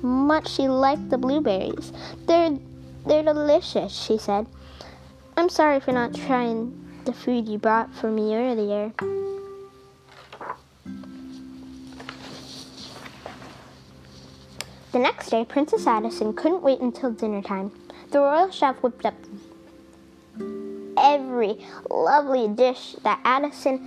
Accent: American